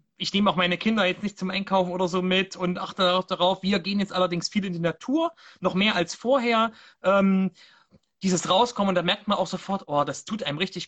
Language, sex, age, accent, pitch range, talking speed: German, male, 30-49, German, 170-200 Hz, 230 wpm